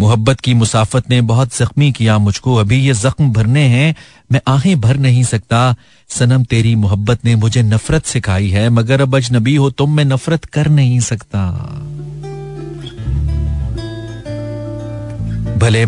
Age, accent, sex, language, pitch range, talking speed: 40-59, native, male, Hindi, 110-145 Hz, 140 wpm